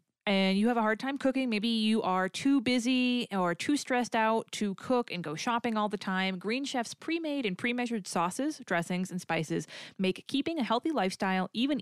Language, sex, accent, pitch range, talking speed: English, female, American, 175-250 Hz, 210 wpm